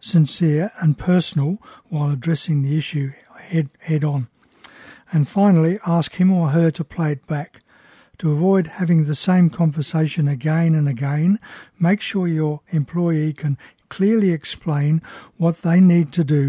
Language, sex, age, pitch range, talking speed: English, male, 60-79, 150-175 Hz, 150 wpm